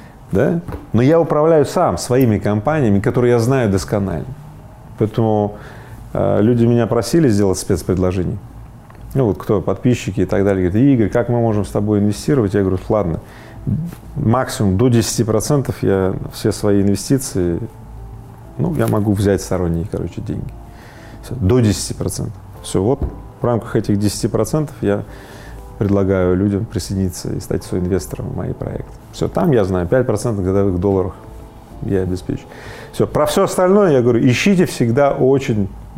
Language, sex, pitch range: Russian, male, 100-125 Hz